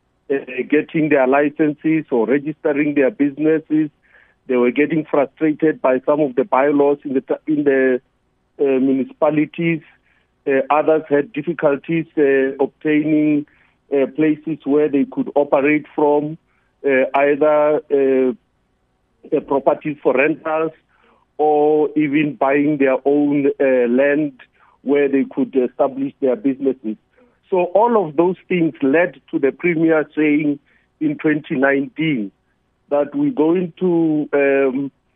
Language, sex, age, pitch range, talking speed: English, male, 50-69, 135-155 Hz, 120 wpm